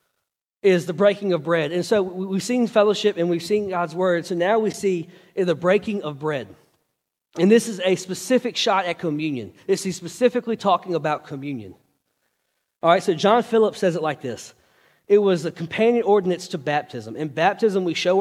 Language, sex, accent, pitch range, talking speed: English, male, American, 180-230 Hz, 190 wpm